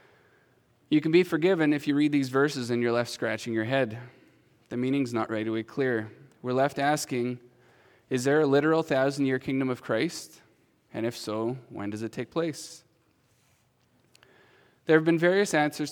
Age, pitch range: 20-39, 115-145 Hz